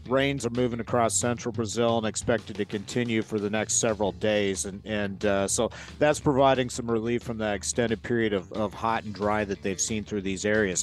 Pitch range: 105-120 Hz